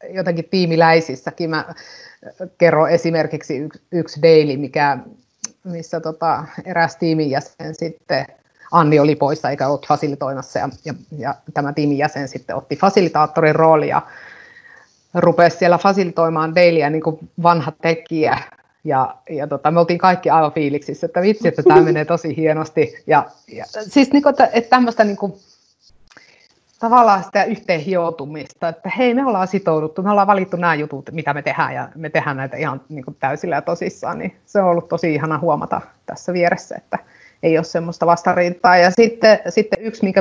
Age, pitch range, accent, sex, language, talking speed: 30-49, 155-195 Hz, native, female, Finnish, 155 wpm